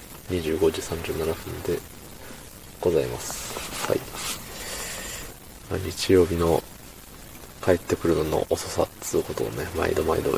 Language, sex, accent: Japanese, male, native